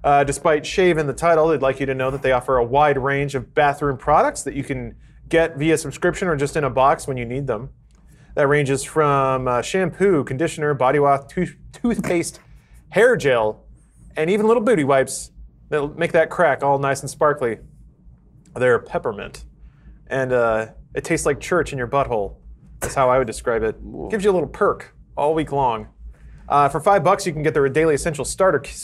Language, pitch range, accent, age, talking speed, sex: English, 130-165 Hz, American, 30-49, 205 wpm, male